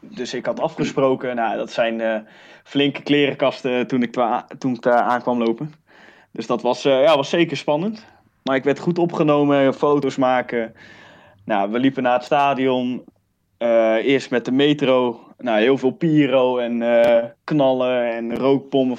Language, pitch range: Dutch, 120-145 Hz